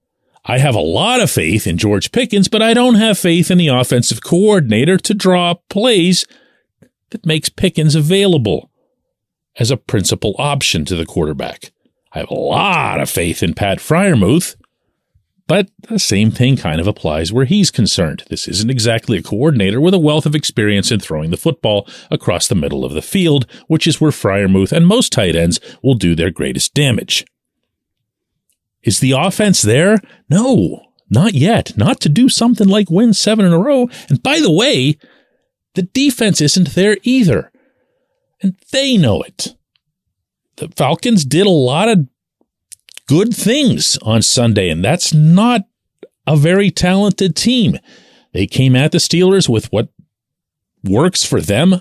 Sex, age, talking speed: male, 40-59, 165 wpm